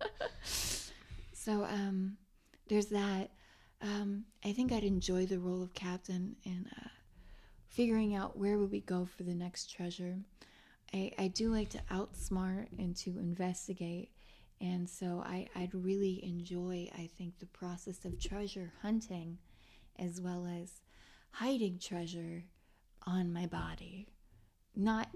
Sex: female